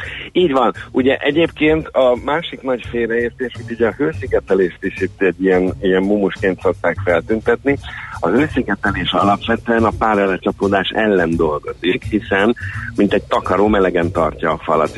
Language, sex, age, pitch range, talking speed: Hungarian, male, 50-69, 85-110 Hz, 135 wpm